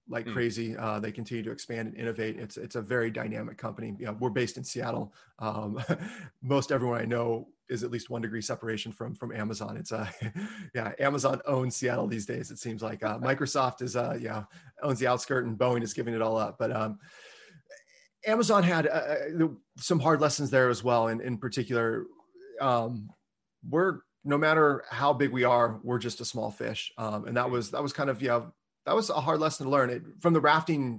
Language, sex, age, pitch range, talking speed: English, male, 30-49, 115-140 Hz, 205 wpm